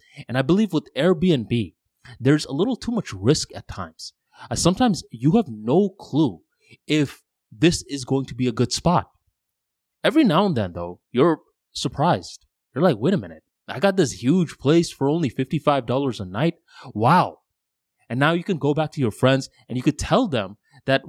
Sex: male